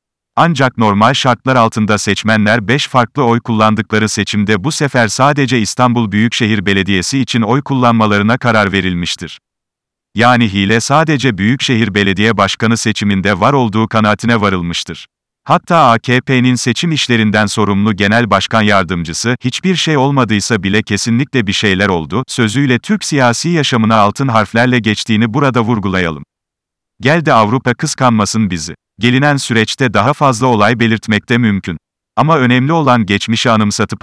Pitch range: 105-125 Hz